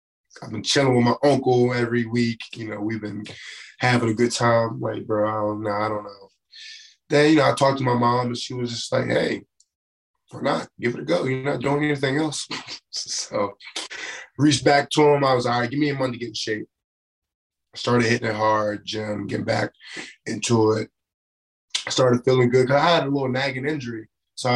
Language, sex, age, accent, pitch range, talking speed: English, male, 20-39, American, 115-140 Hz, 215 wpm